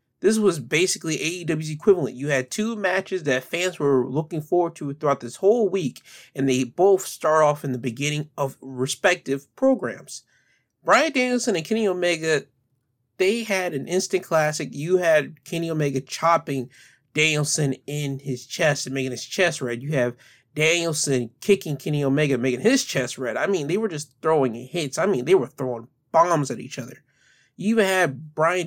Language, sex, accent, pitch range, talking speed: English, male, American, 135-185 Hz, 175 wpm